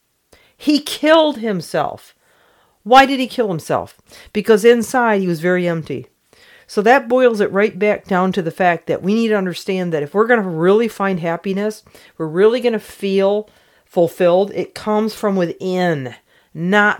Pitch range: 155-215 Hz